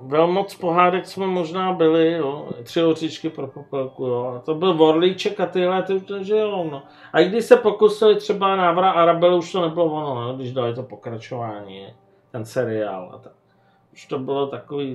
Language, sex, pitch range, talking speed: Czech, male, 140-185 Hz, 180 wpm